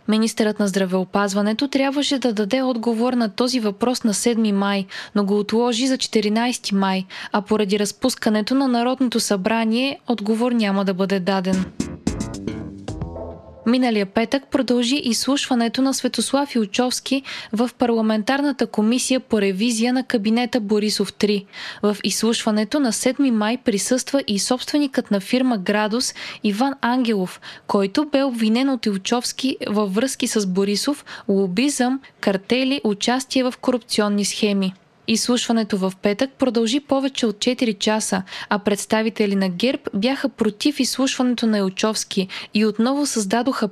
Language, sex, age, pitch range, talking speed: Bulgarian, female, 20-39, 210-255 Hz, 130 wpm